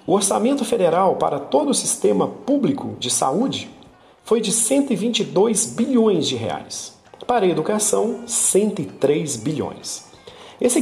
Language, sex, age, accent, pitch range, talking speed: Portuguese, male, 40-59, Brazilian, 175-235 Hz, 120 wpm